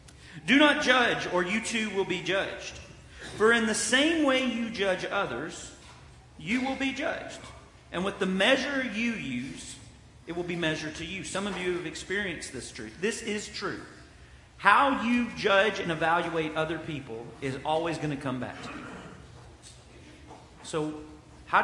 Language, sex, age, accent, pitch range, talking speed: English, male, 40-59, American, 165-235 Hz, 165 wpm